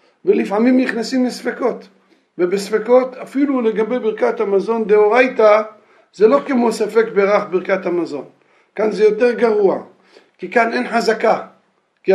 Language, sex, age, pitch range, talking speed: Hebrew, male, 50-69, 190-245 Hz, 125 wpm